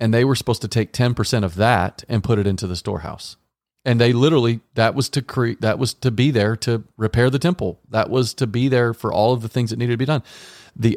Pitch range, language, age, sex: 105-130 Hz, English, 40-59, male